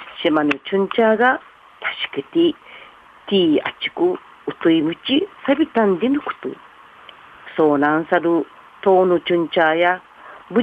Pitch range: 170-270 Hz